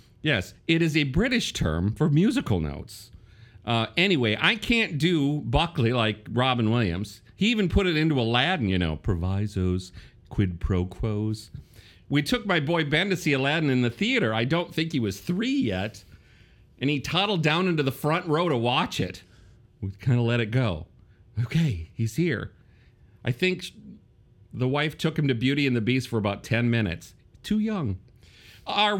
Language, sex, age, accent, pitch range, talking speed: English, male, 40-59, American, 110-165 Hz, 180 wpm